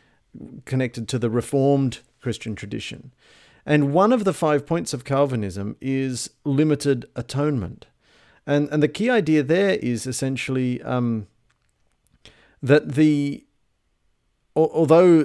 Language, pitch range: English, 115-145 Hz